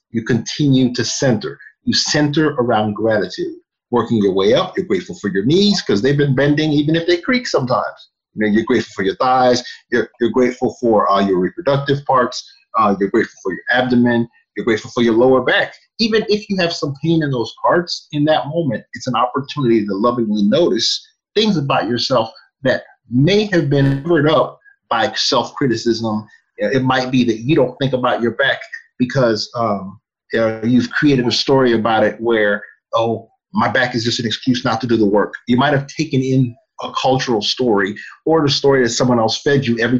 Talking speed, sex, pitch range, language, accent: 200 wpm, male, 110-145 Hz, English, American